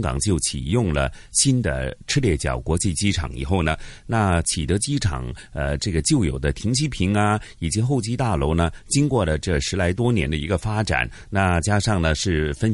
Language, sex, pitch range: Chinese, male, 80-115 Hz